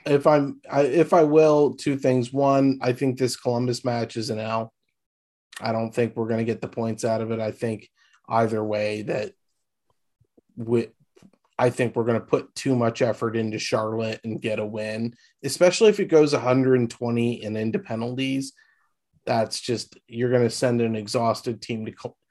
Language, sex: English, male